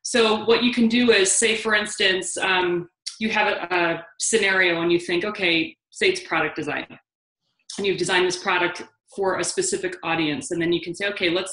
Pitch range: 175-225 Hz